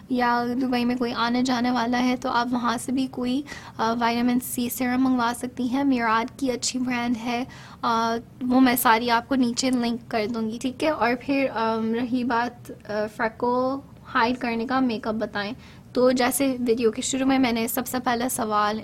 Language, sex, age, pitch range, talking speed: Urdu, female, 20-39, 225-250 Hz, 190 wpm